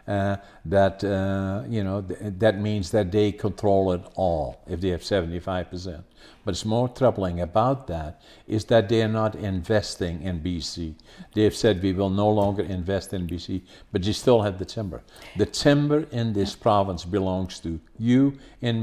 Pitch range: 95-115 Hz